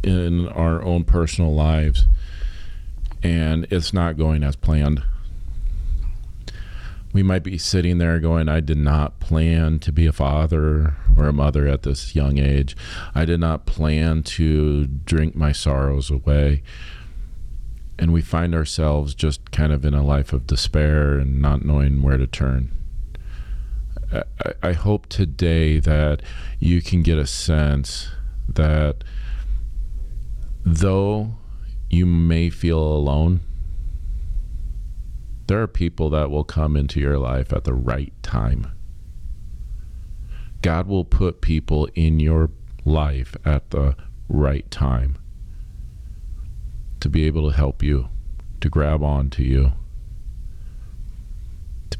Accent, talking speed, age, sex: American, 130 wpm, 40-59, male